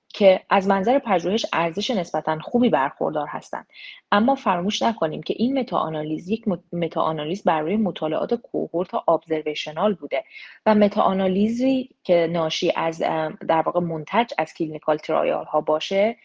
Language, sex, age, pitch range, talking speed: Persian, female, 30-49, 155-215 Hz, 130 wpm